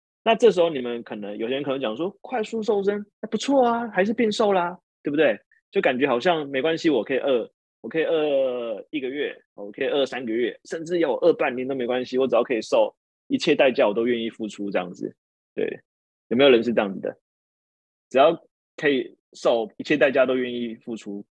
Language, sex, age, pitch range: Chinese, male, 20-39, 110-185 Hz